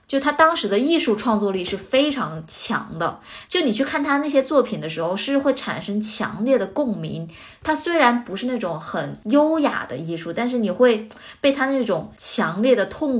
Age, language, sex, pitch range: 20-39, Chinese, female, 195-275 Hz